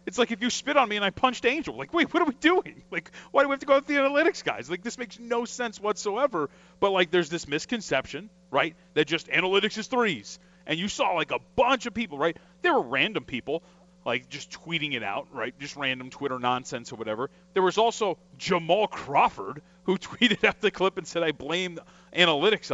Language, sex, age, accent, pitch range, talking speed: English, male, 30-49, American, 165-215 Hz, 225 wpm